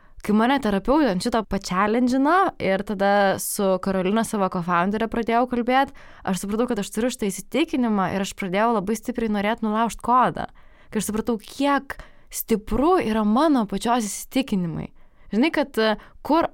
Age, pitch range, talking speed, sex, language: 20-39, 195-245 Hz, 145 wpm, female, English